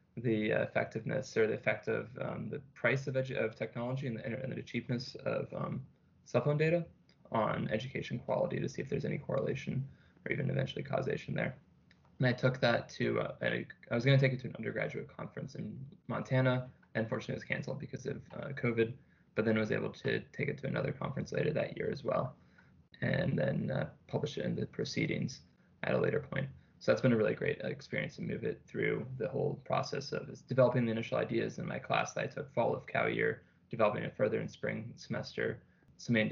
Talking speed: 210 wpm